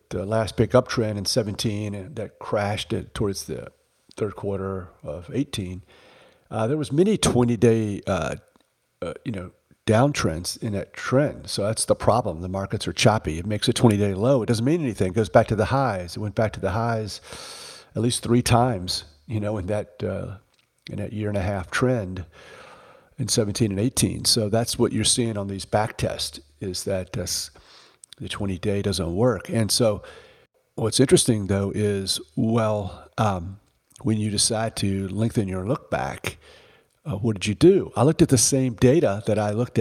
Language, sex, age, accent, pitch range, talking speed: English, male, 50-69, American, 100-120 Hz, 190 wpm